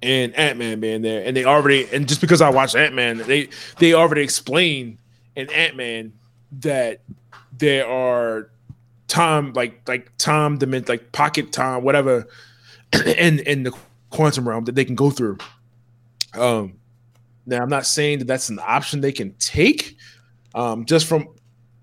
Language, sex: English, male